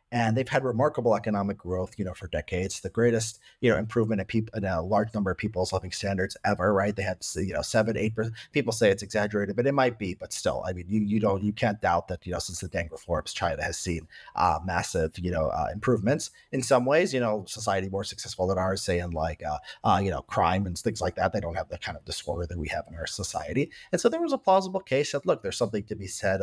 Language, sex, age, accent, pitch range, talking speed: English, male, 30-49, American, 95-125 Hz, 265 wpm